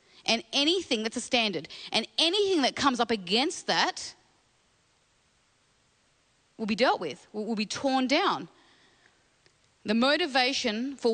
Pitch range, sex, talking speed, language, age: 185-250 Hz, female, 125 wpm, English, 30-49